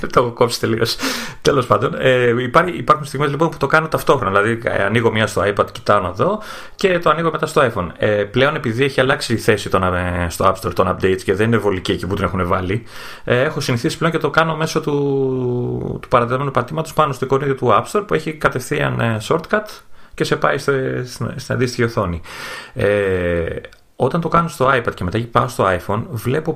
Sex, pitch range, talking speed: male, 100-135 Hz, 200 wpm